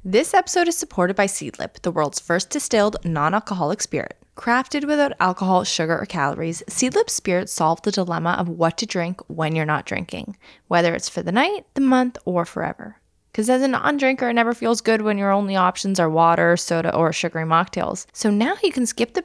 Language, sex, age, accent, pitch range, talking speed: English, female, 10-29, American, 175-240 Hz, 200 wpm